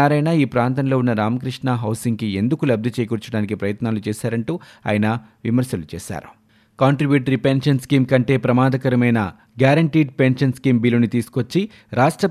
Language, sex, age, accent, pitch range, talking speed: Telugu, male, 30-49, native, 115-140 Hz, 125 wpm